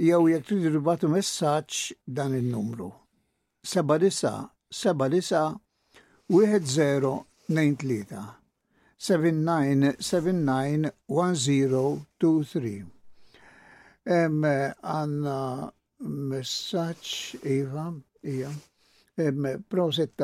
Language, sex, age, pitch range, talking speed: English, male, 60-79, 130-165 Hz, 35 wpm